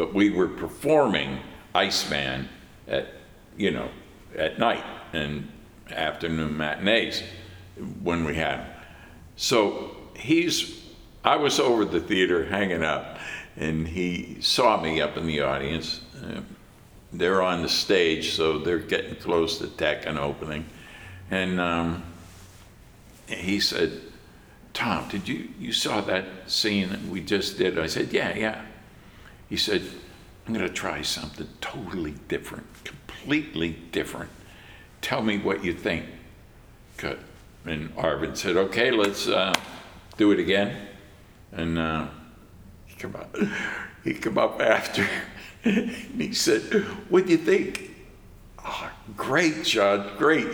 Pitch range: 80-110 Hz